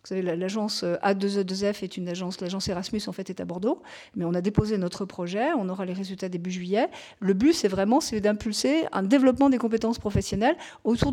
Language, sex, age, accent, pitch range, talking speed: French, female, 50-69, French, 185-245 Hz, 205 wpm